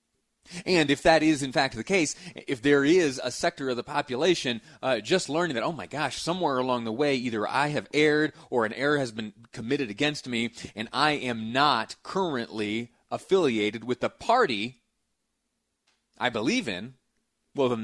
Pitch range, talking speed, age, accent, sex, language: 110-145 Hz, 180 wpm, 30-49, American, male, English